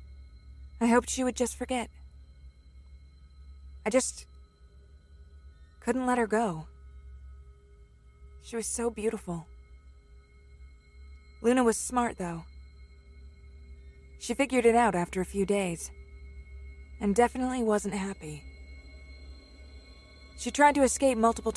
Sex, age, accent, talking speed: female, 20-39, American, 105 wpm